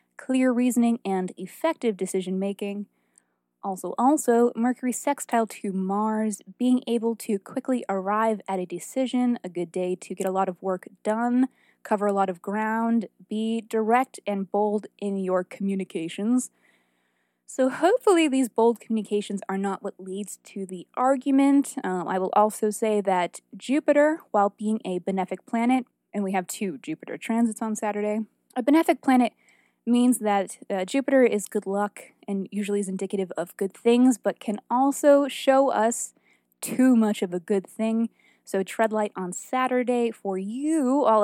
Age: 20-39